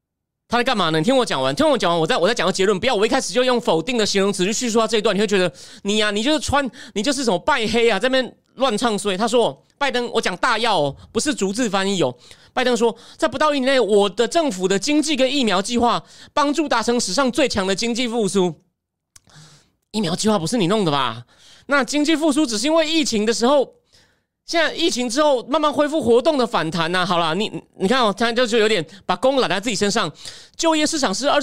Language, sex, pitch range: Chinese, male, 205-280 Hz